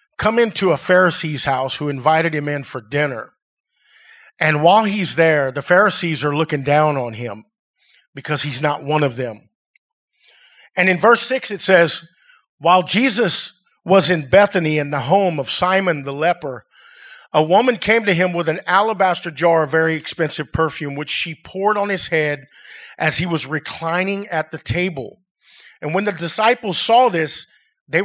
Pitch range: 155-210 Hz